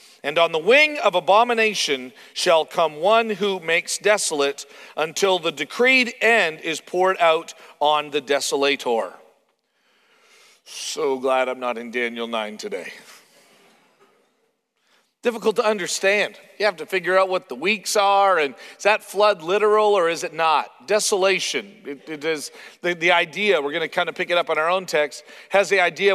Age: 40-59